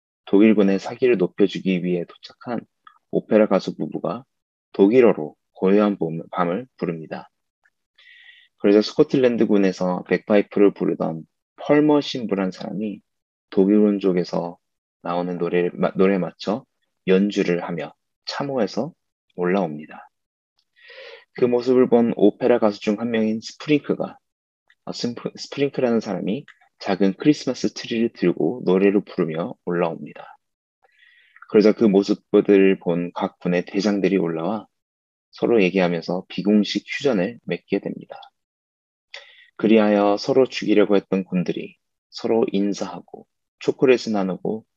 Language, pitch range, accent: Korean, 90-115 Hz, native